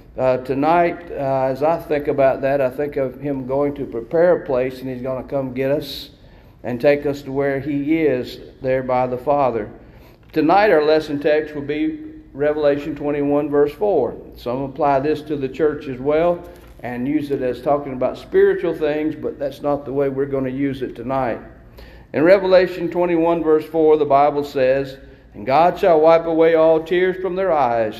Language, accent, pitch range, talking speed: English, American, 135-165 Hz, 195 wpm